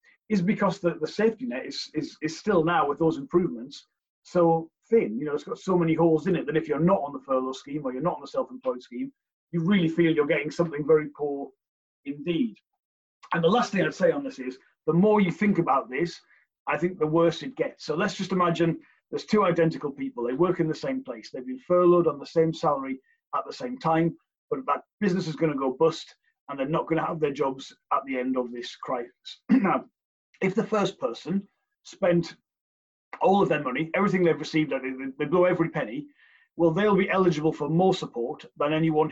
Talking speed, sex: 215 wpm, male